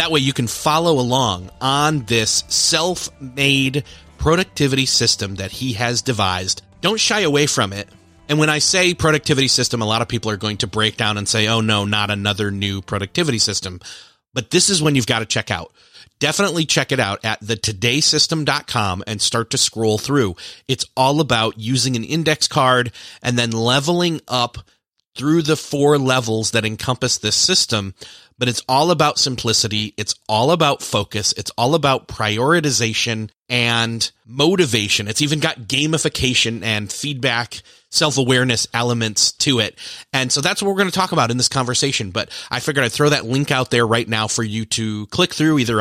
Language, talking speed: English, 180 wpm